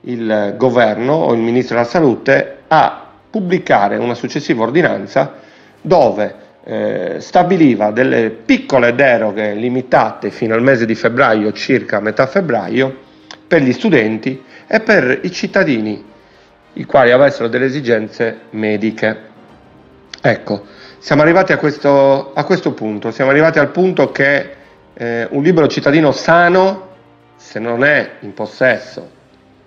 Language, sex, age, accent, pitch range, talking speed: Italian, male, 40-59, native, 110-145 Hz, 125 wpm